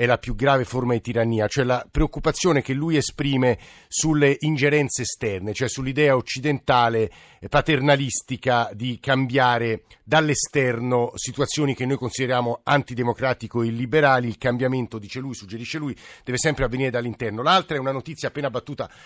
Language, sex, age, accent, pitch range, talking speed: Italian, male, 50-69, native, 115-145 Hz, 145 wpm